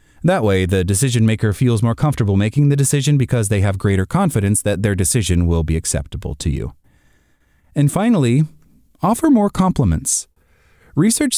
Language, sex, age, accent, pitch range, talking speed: English, male, 30-49, American, 105-145 Hz, 160 wpm